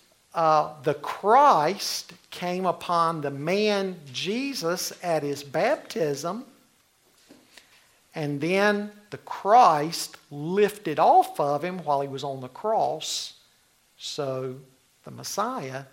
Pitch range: 150-230 Hz